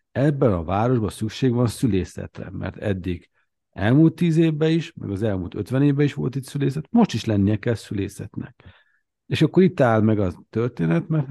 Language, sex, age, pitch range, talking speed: Hungarian, male, 50-69, 105-130 Hz, 180 wpm